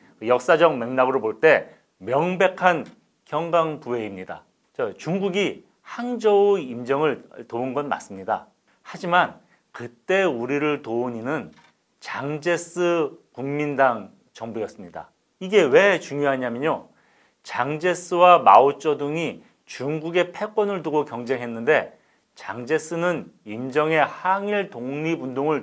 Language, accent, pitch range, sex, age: Korean, native, 130-190 Hz, male, 40-59